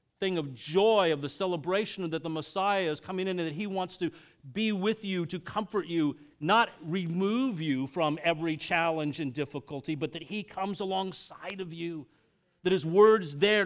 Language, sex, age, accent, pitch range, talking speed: English, male, 50-69, American, 135-190 Hz, 185 wpm